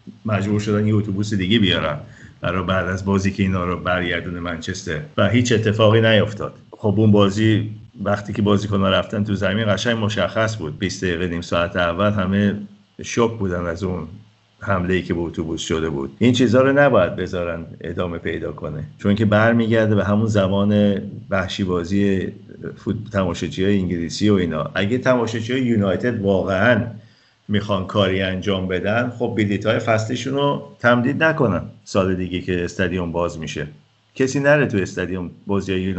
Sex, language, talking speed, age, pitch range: male, Persian, 165 wpm, 50-69, 90-110 Hz